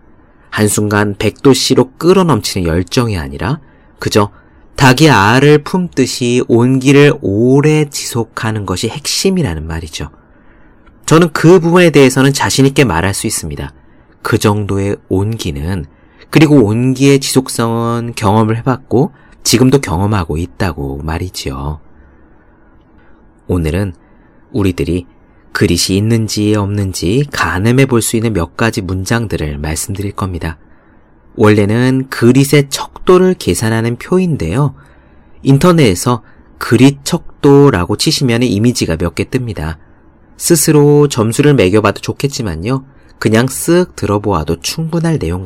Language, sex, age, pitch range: Korean, male, 40-59, 90-135 Hz